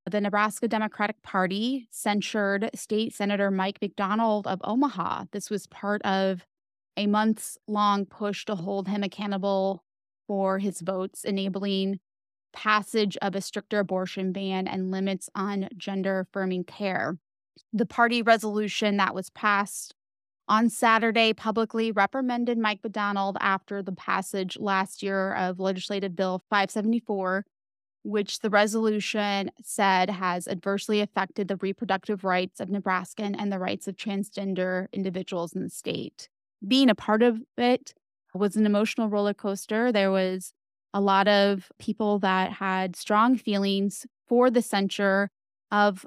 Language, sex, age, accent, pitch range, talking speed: English, female, 20-39, American, 190-215 Hz, 135 wpm